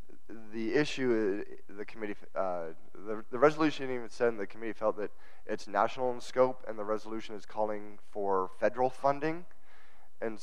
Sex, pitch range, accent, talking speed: male, 105-135 Hz, American, 155 wpm